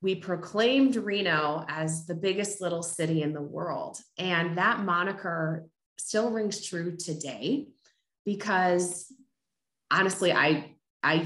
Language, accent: English, American